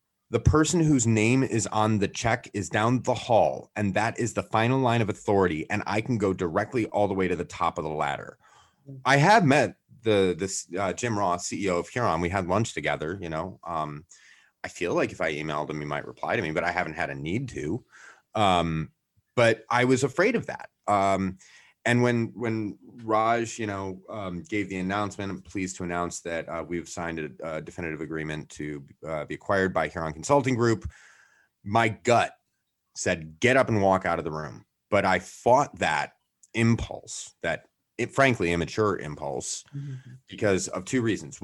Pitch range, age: 90-125 Hz, 30-49